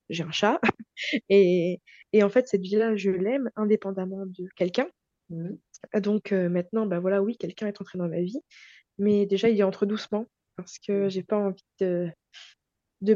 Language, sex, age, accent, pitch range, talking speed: French, female, 20-39, French, 185-215 Hz, 180 wpm